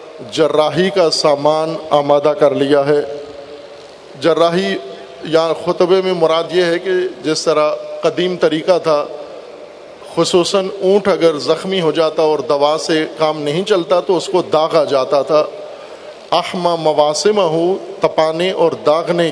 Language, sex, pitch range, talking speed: Urdu, male, 155-185 Hz, 135 wpm